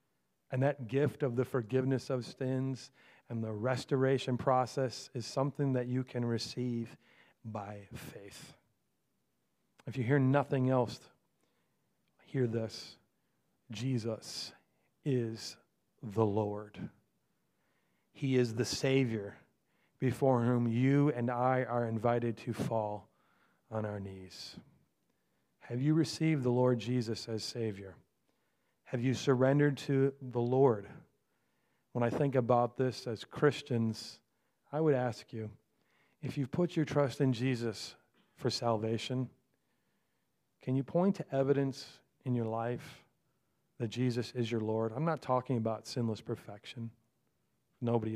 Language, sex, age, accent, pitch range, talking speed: English, male, 50-69, American, 115-135 Hz, 125 wpm